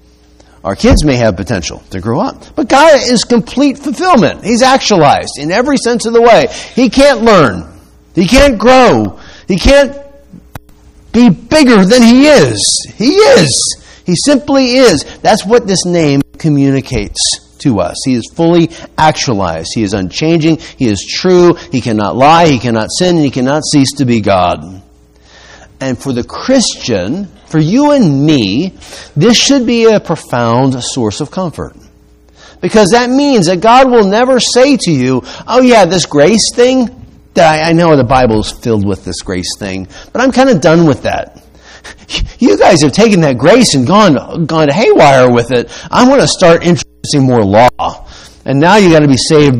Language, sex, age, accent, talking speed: English, male, 50-69, American, 170 wpm